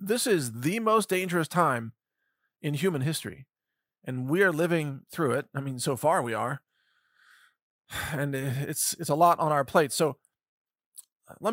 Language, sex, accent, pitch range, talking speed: English, male, American, 135-170 Hz, 160 wpm